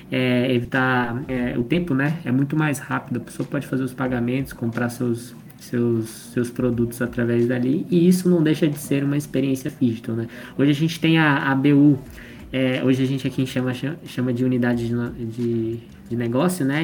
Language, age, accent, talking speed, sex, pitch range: Portuguese, 20-39, Brazilian, 190 wpm, male, 125-150 Hz